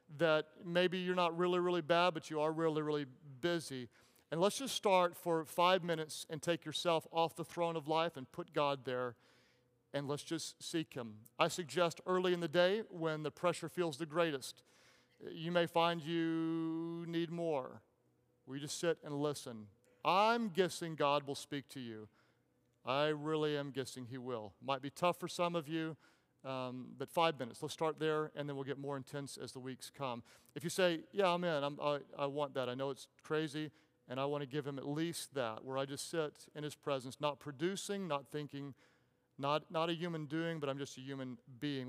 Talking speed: 205 wpm